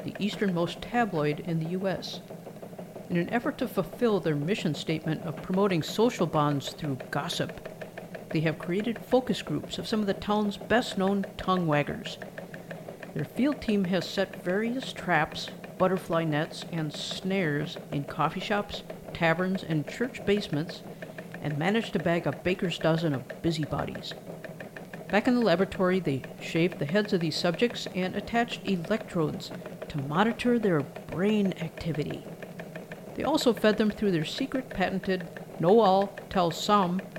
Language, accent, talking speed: English, American, 140 wpm